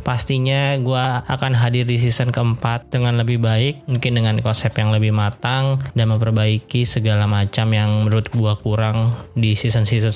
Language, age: Indonesian, 20-39